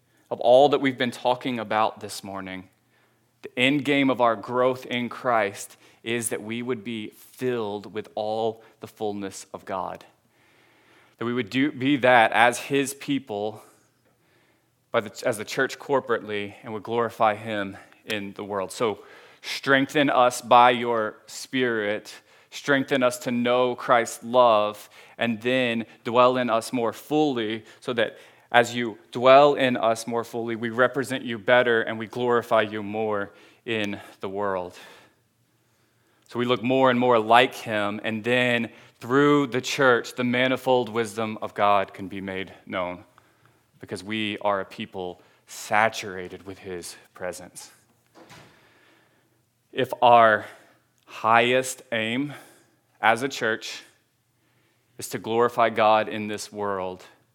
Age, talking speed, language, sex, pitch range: 20-39, 140 wpm, English, male, 105-125 Hz